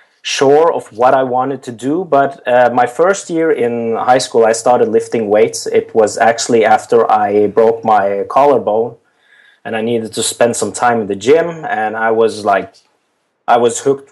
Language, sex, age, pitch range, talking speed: English, male, 20-39, 115-145 Hz, 185 wpm